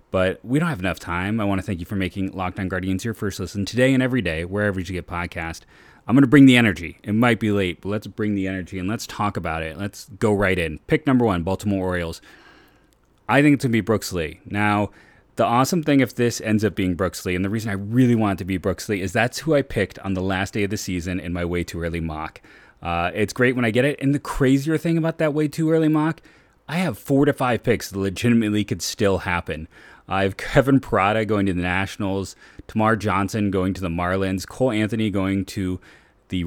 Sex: male